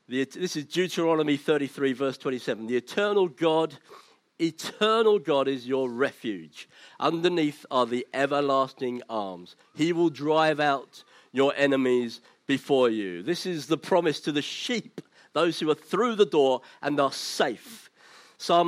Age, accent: 50-69, British